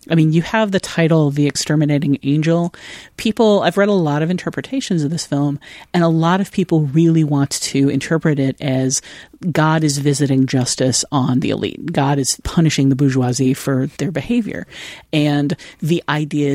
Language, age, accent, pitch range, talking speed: English, 40-59, American, 140-165 Hz, 175 wpm